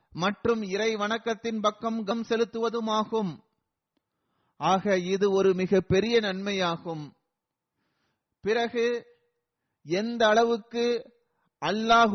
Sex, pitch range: male, 180-225 Hz